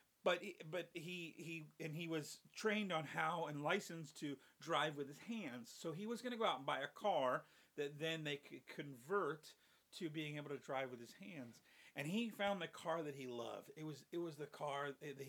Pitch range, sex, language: 140-180 Hz, male, English